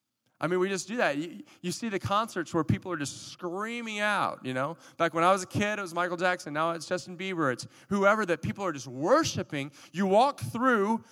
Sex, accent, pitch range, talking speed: male, American, 160-220 Hz, 230 wpm